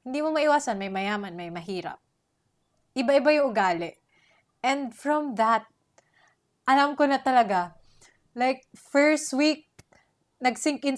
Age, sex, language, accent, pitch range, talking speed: 20-39, female, Filipino, native, 185-280 Hz, 115 wpm